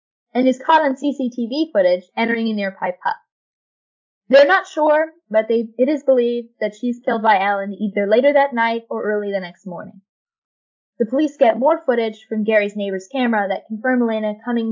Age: 10-29